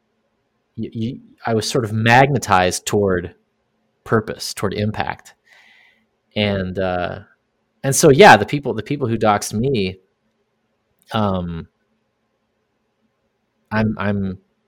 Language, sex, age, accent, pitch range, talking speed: English, male, 30-49, American, 100-125 Hz, 100 wpm